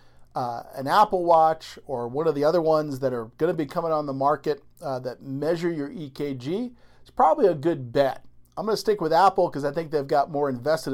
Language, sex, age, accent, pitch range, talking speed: English, male, 50-69, American, 130-170 Hz, 230 wpm